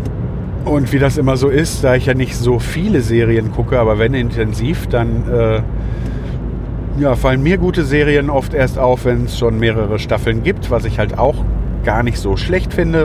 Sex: male